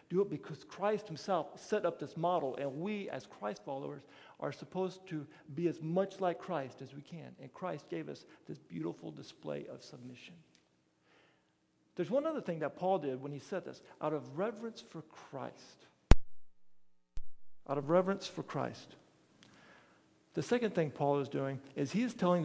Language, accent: English, American